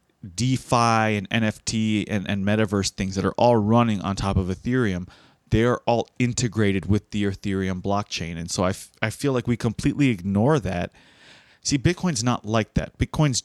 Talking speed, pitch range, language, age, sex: 170 wpm, 100-135 Hz, English, 30-49, male